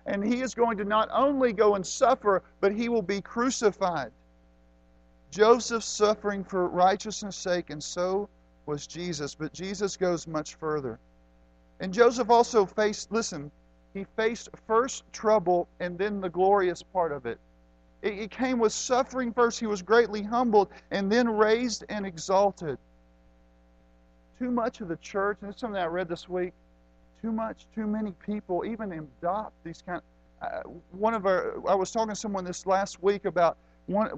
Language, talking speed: English, 165 wpm